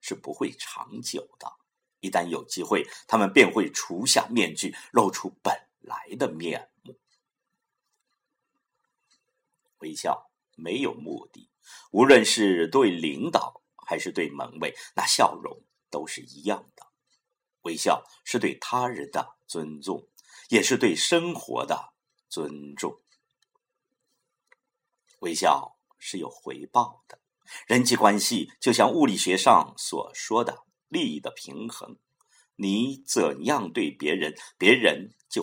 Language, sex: Chinese, male